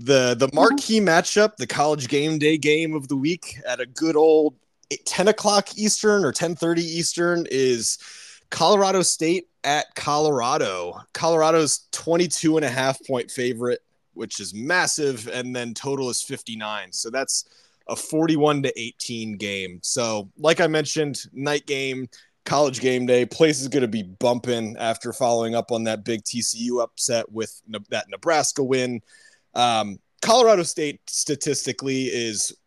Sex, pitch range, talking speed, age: male, 115-150 Hz, 150 wpm, 20-39